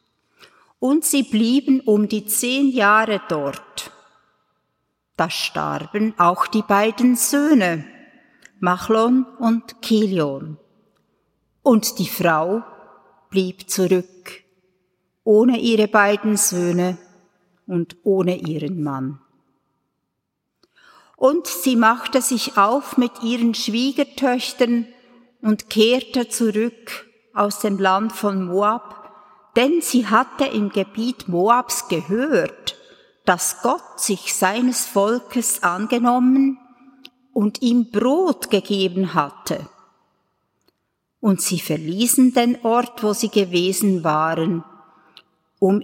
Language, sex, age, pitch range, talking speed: German, female, 50-69, 185-245 Hz, 95 wpm